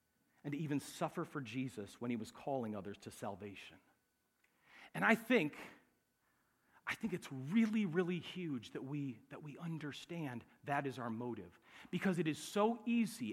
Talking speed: 160 wpm